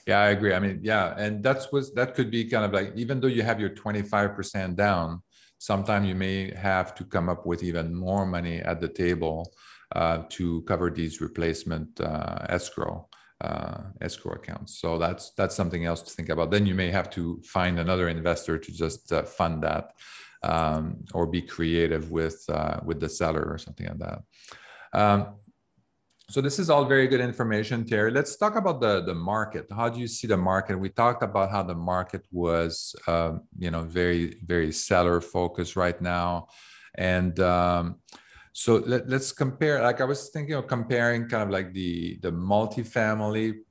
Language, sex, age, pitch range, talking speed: English, male, 40-59, 85-105 Hz, 185 wpm